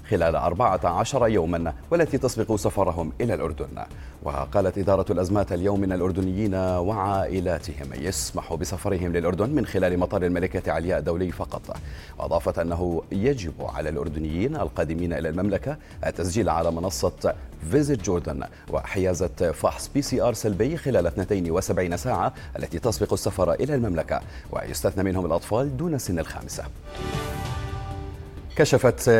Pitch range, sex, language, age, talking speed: 80-105 Hz, male, Arabic, 40-59, 120 wpm